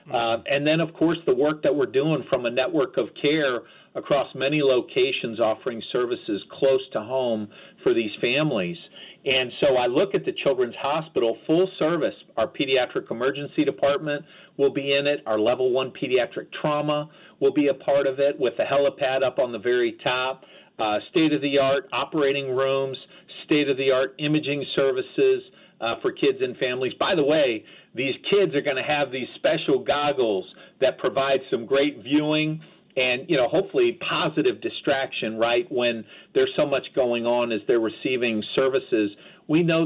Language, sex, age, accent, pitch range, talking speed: English, male, 50-69, American, 135-185 Hz, 165 wpm